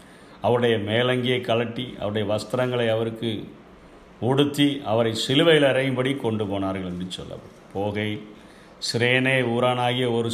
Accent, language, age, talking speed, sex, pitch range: native, Tamil, 50-69, 105 wpm, male, 110-145 Hz